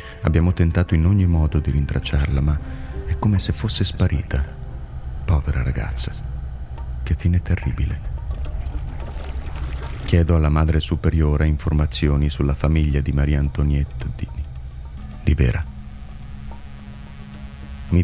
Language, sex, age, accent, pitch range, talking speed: Italian, male, 30-49, native, 70-80 Hz, 105 wpm